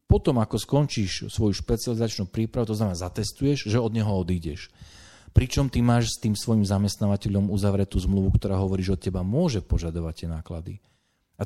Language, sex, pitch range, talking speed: Slovak, male, 90-115 Hz, 170 wpm